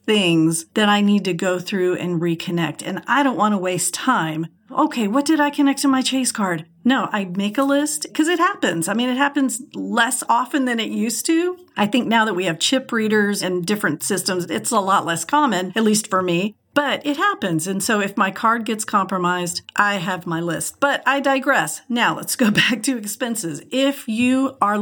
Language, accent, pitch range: English, American, 190-255 Hz